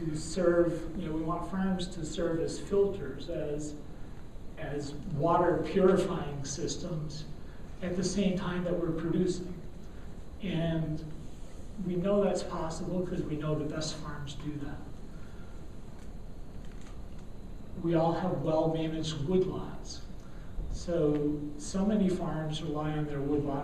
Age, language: 40-59, English